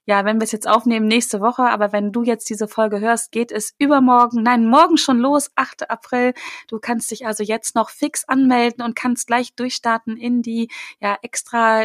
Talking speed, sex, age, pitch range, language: 205 wpm, female, 20-39, 210-250 Hz, German